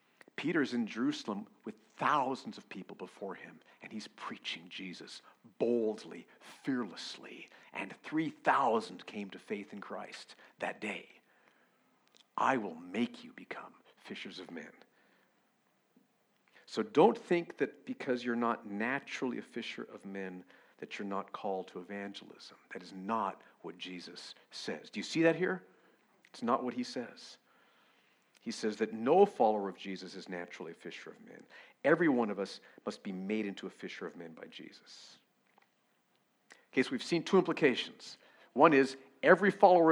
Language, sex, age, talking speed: English, male, 50-69, 155 wpm